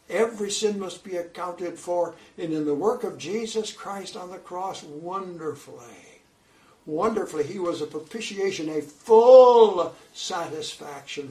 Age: 60-79